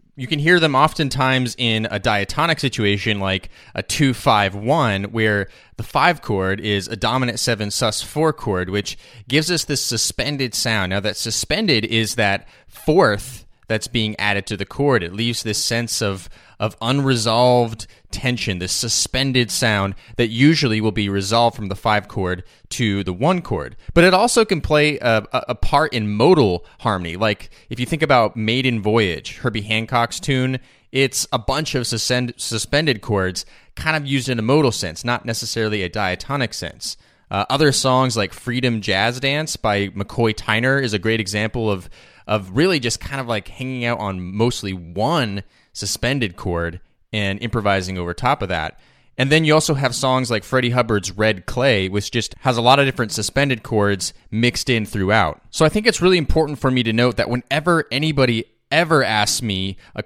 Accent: American